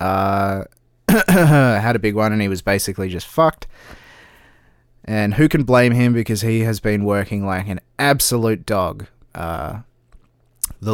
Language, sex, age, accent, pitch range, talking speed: English, male, 20-39, Australian, 100-120 Hz, 150 wpm